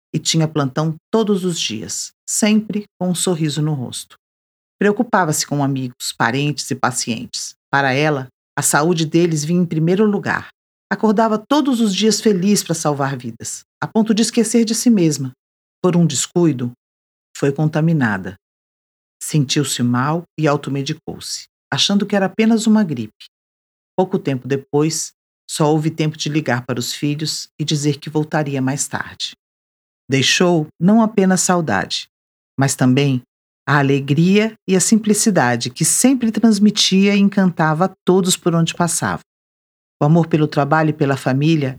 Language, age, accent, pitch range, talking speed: Portuguese, 50-69, Brazilian, 135-180 Hz, 145 wpm